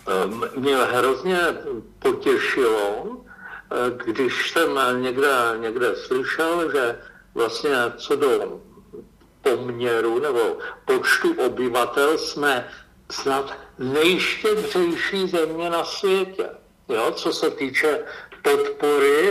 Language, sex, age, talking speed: Czech, male, 60-79, 85 wpm